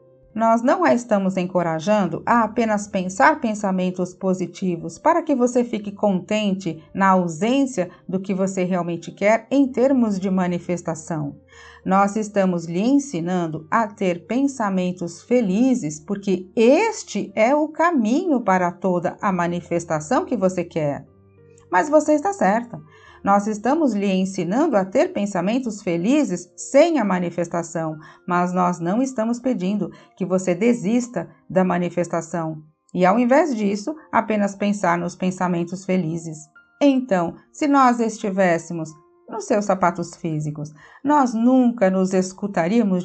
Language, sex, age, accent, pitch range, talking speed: Portuguese, female, 50-69, Brazilian, 175-235 Hz, 130 wpm